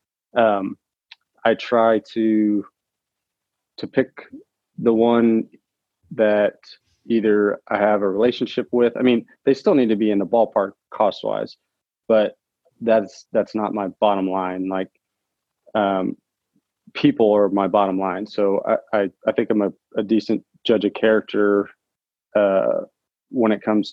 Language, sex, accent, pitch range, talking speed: English, male, American, 100-110 Hz, 145 wpm